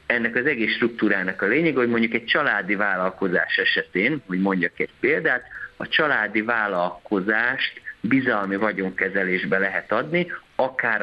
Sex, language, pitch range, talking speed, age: male, Hungarian, 95-120 Hz, 130 wpm, 50-69